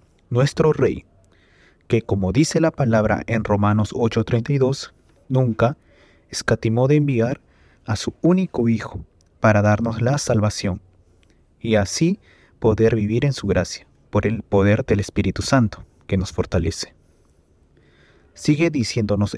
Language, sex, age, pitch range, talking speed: Spanish, male, 30-49, 95-125 Hz, 125 wpm